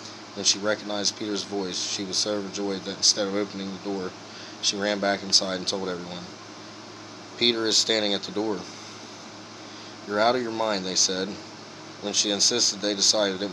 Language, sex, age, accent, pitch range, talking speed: English, male, 20-39, American, 100-105 Hz, 180 wpm